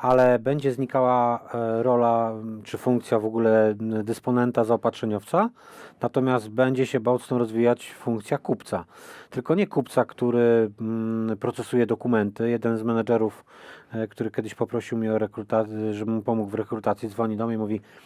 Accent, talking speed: native, 135 wpm